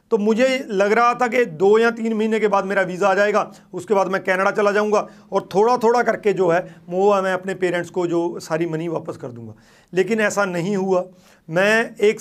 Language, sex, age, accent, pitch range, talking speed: Hindi, male, 40-59, native, 185-230 Hz, 220 wpm